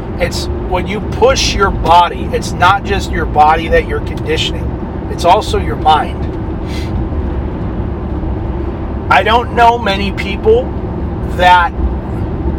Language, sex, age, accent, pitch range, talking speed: English, male, 40-59, American, 110-185 Hz, 115 wpm